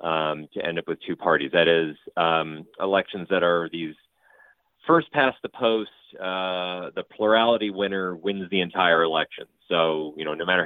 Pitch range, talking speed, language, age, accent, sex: 85-115 Hz, 175 wpm, English, 40-59, American, male